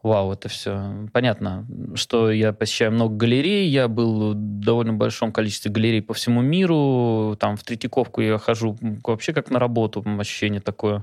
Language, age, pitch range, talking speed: Russian, 20-39, 115-150 Hz, 165 wpm